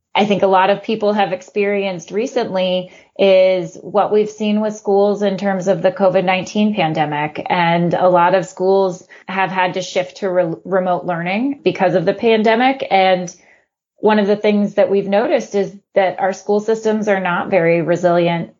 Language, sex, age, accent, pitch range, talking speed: English, female, 30-49, American, 180-200 Hz, 175 wpm